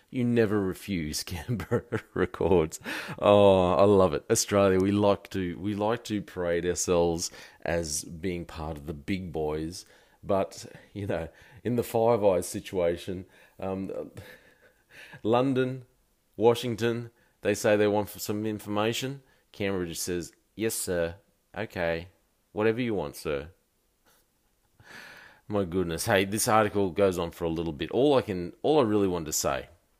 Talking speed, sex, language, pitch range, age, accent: 145 wpm, male, English, 85-105 Hz, 30-49, Australian